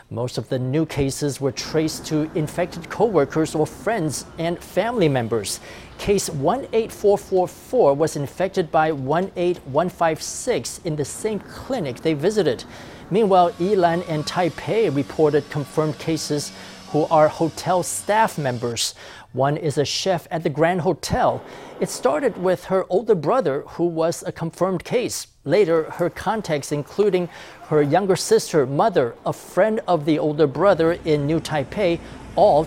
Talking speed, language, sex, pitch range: 140 wpm, English, male, 145-180 Hz